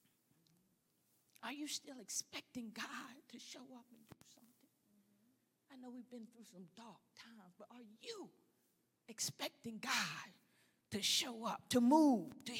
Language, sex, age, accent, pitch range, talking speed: English, female, 40-59, American, 235-295 Hz, 145 wpm